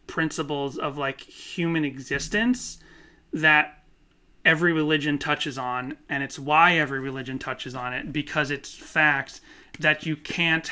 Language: English